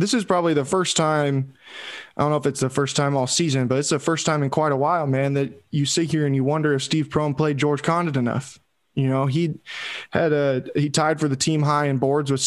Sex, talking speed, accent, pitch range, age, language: male, 260 wpm, American, 135-155 Hz, 20-39, English